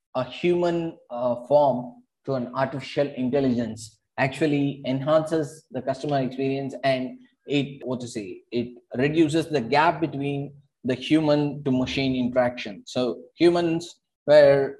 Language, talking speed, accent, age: English, 125 wpm, Indian, 20-39